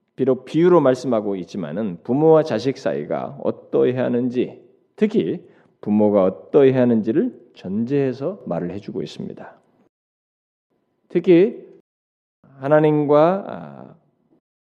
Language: Korean